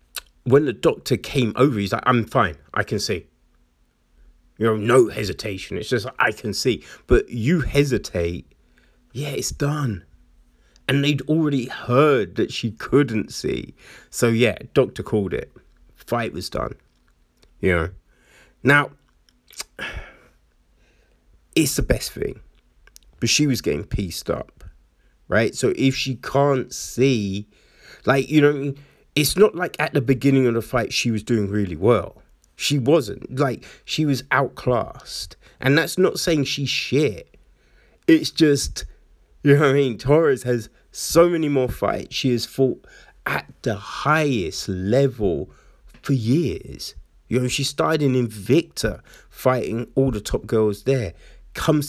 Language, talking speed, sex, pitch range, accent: English, 145 wpm, male, 105-140 Hz, British